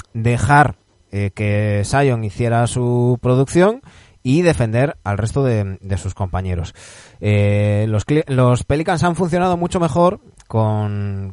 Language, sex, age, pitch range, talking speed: Spanish, male, 20-39, 110-150 Hz, 125 wpm